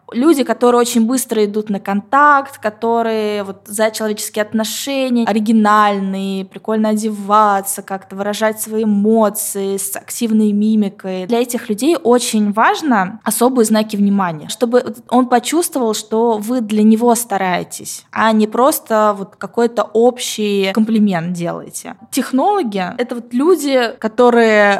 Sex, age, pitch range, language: female, 20-39, 215-255 Hz, Russian